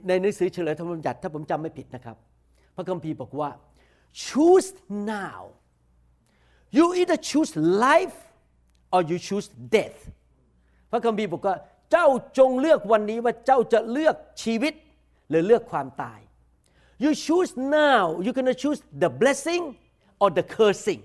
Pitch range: 155-235 Hz